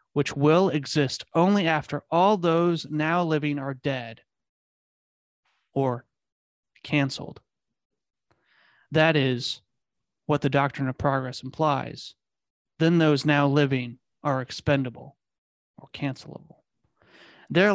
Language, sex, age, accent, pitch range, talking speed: English, male, 30-49, American, 135-155 Hz, 100 wpm